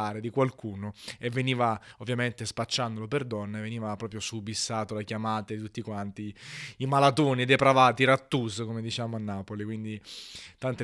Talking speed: 160 wpm